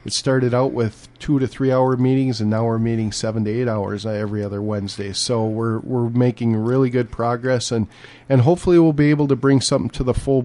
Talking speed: 220 wpm